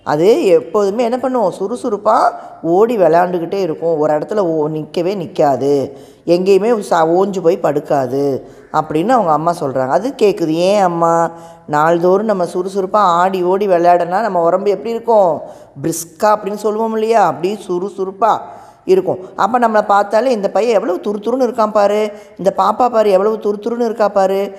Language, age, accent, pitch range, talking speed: Tamil, 20-39, native, 170-225 Hz, 135 wpm